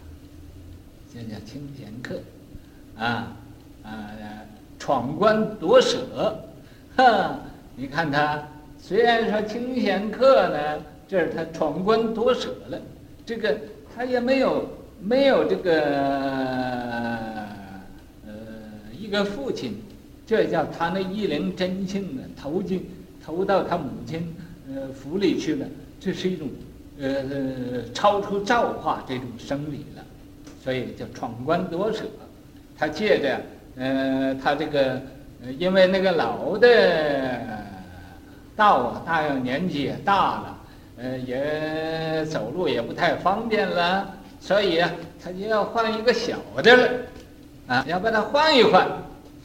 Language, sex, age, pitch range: Chinese, male, 60-79, 130-205 Hz